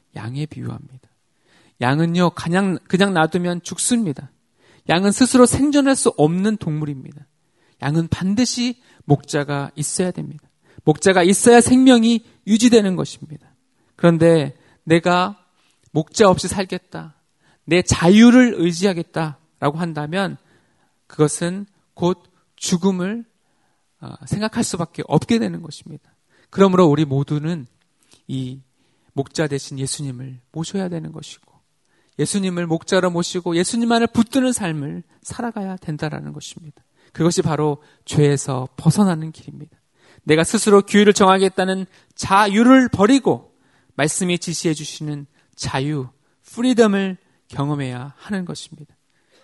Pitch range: 145-195 Hz